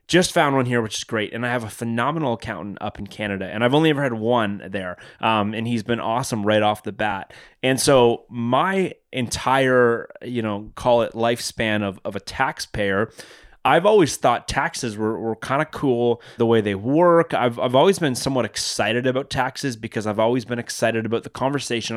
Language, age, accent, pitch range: English, 20-39, American, 110-130 Hz